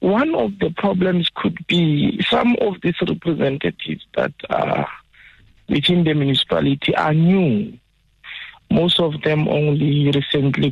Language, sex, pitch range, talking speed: English, male, 130-155 Hz, 125 wpm